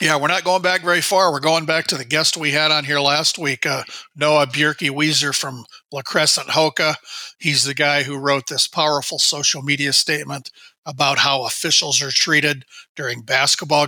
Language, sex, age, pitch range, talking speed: English, male, 40-59, 140-165 Hz, 190 wpm